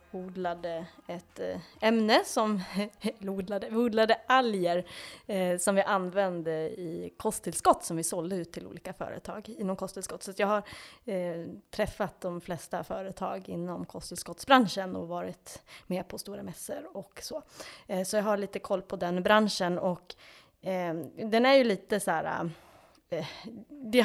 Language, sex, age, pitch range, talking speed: Swedish, female, 20-39, 180-215 Hz, 145 wpm